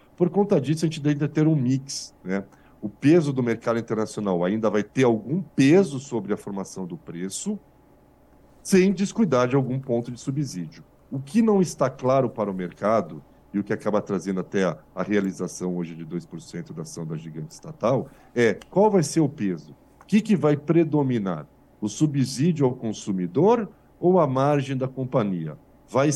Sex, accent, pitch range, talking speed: male, Brazilian, 100-145 Hz, 180 wpm